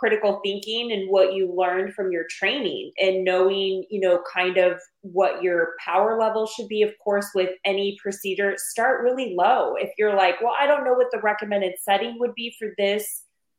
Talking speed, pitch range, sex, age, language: 195 wpm, 180-210 Hz, female, 20-39, English